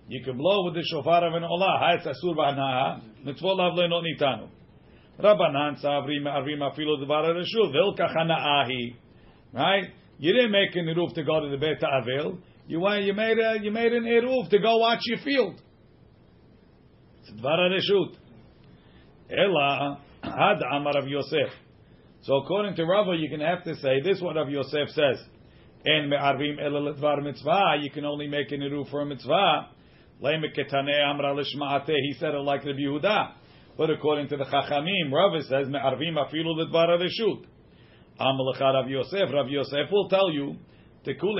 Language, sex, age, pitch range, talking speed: English, male, 50-69, 140-175 Hz, 110 wpm